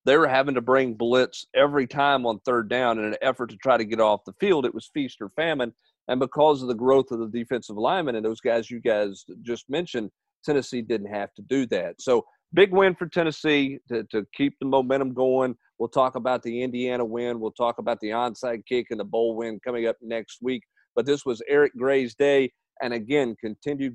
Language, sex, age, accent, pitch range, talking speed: English, male, 40-59, American, 115-145 Hz, 220 wpm